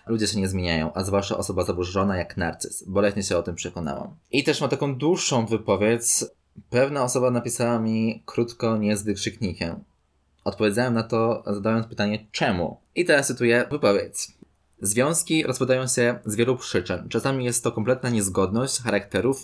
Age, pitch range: 20-39, 100-120 Hz